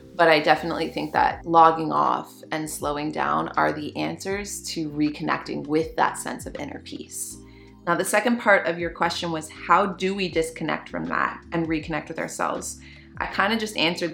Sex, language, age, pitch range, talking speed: female, English, 20-39, 155-195 Hz, 185 wpm